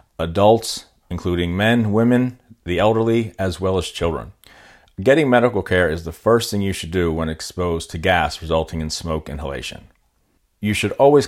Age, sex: 40-59, male